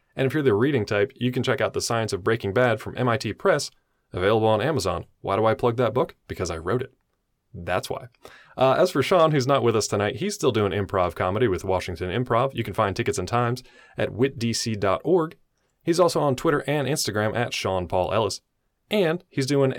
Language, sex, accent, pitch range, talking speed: English, male, American, 105-145 Hz, 215 wpm